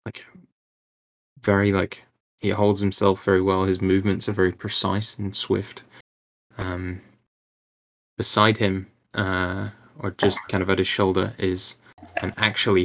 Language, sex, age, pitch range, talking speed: English, male, 10-29, 95-110 Hz, 135 wpm